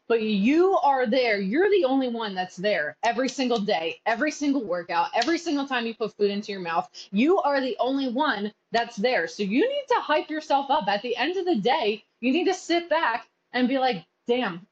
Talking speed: 220 wpm